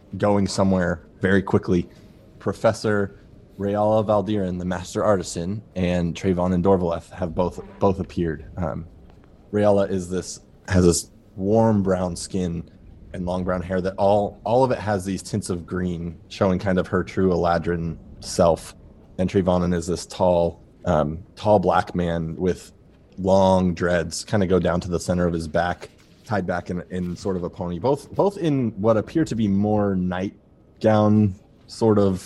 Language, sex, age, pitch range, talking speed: English, male, 20-39, 90-105 Hz, 165 wpm